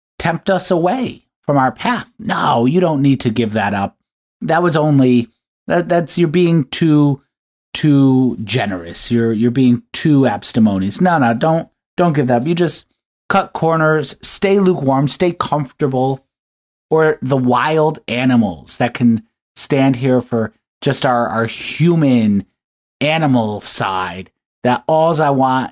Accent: American